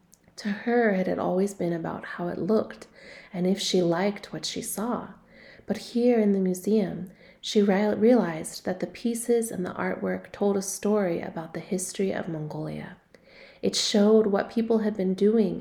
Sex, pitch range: female, 175-220 Hz